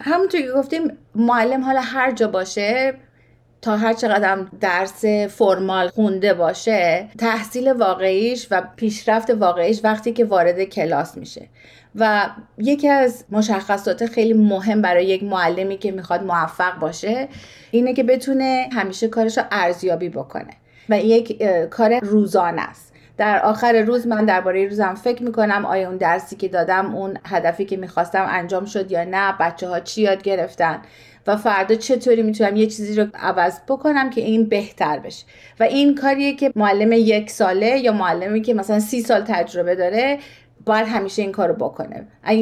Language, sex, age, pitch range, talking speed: Persian, female, 30-49, 190-235 Hz, 160 wpm